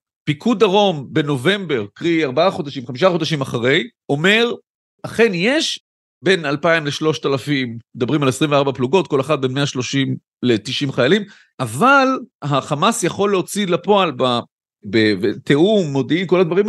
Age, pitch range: 40-59, 135-185 Hz